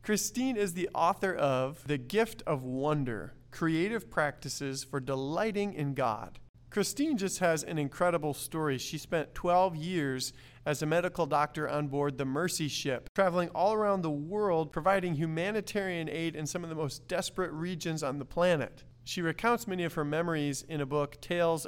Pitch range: 145-195 Hz